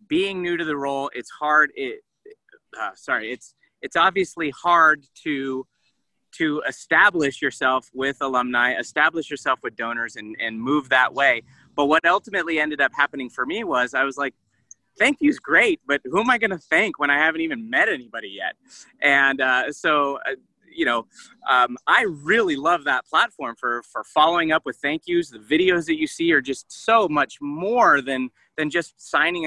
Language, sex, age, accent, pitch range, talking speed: English, male, 30-49, American, 135-205 Hz, 185 wpm